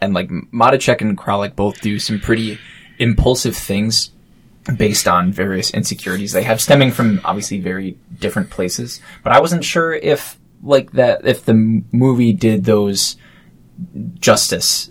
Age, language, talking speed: 20-39, English, 145 wpm